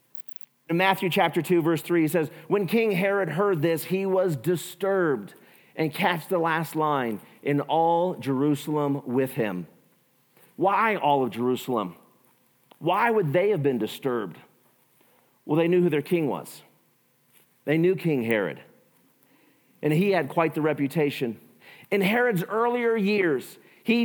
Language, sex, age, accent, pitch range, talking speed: English, male, 40-59, American, 145-185 Hz, 145 wpm